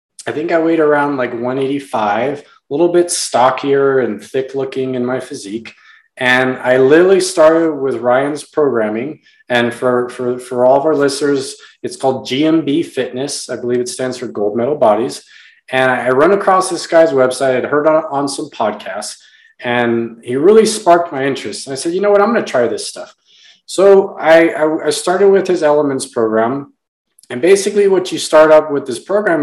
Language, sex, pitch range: English, male, 125-180 Hz